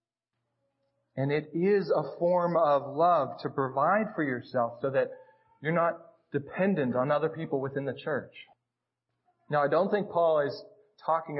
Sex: male